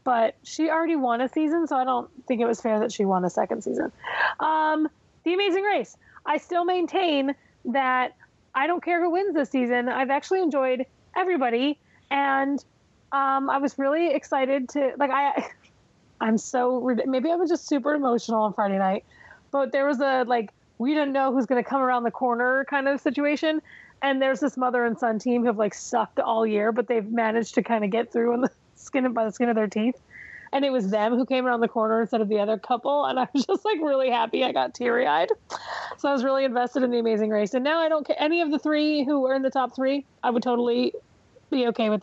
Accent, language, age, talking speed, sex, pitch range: American, English, 30-49, 230 wpm, female, 235-295 Hz